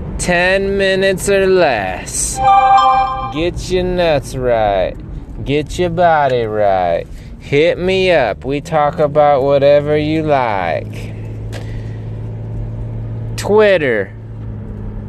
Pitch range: 110-170 Hz